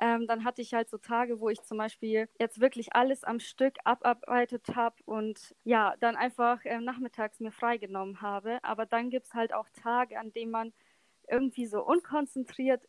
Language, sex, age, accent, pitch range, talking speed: German, female, 20-39, German, 215-235 Hz, 185 wpm